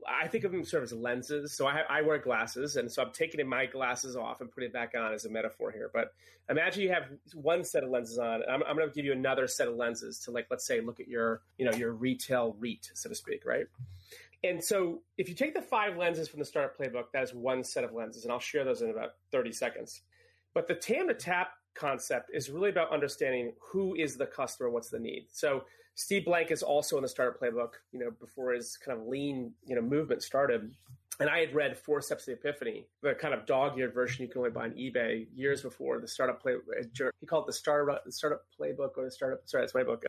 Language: English